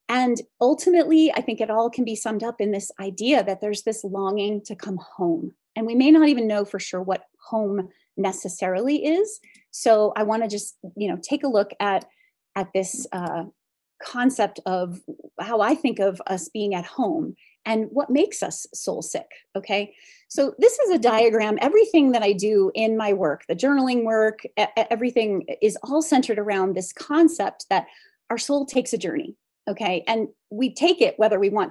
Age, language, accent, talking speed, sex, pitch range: 30-49, English, American, 185 wpm, female, 205-290 Hz